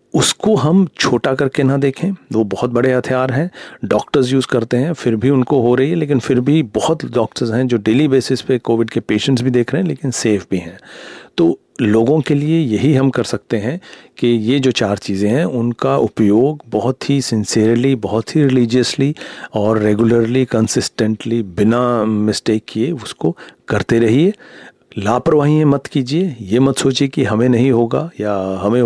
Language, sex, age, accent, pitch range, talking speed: Hindi, male, 40-59, native, 105-130 Hz, 180 wpm